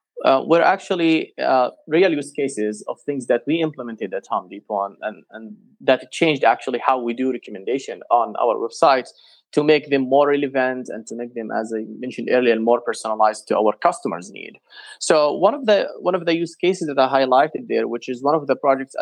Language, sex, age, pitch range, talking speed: English, male, 20-39, 125-155 Hz, 205 wpm